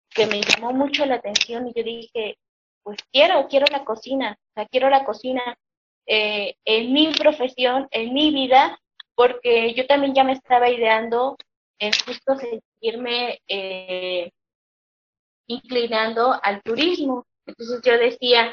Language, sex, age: Spanish, female, 20-39